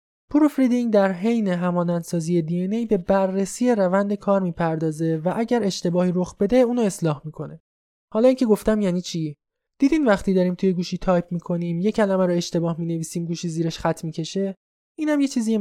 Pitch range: 170-215 Hz